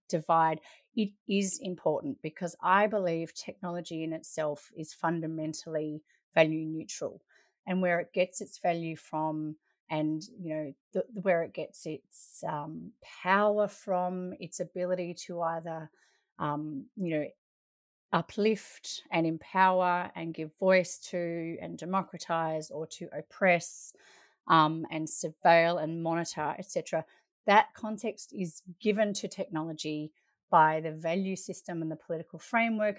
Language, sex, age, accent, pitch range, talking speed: English, female, 30-49, Australian, 160-200 Hz, 125 wpm